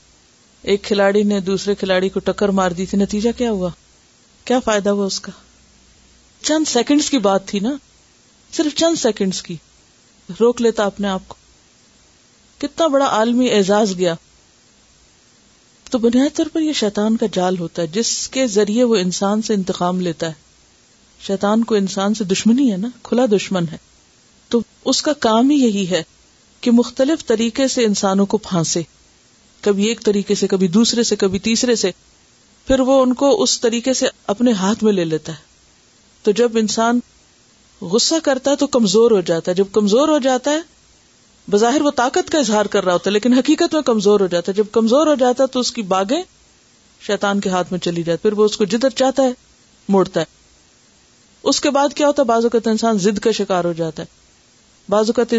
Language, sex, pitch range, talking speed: Urdu, female, 195-250 Hz, 190 wpm